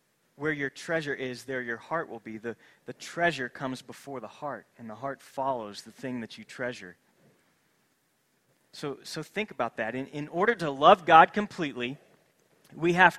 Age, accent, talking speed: 30-49, American, 175 wpm